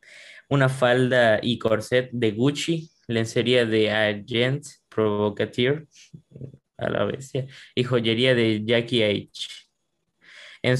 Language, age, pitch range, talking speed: Spanish, 20-39, 110-135 Hz, 105 wpm